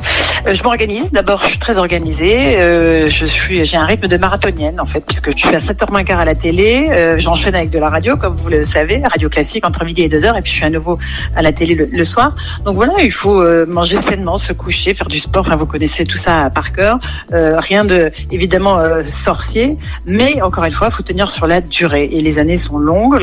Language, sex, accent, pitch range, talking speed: French, female, French, 165-210 Hz, 245 wpm